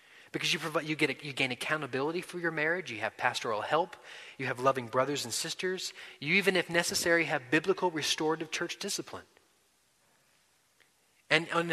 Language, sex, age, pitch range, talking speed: English, male, 30-49, 130-175 Hz, 170 wpm